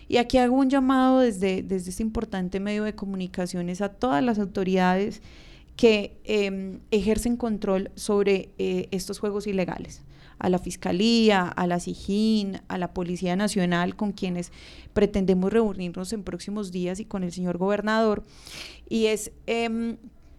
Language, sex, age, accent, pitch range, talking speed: Spanish, female, 30-49, Colombian, 180-215 Hz, 145 wpm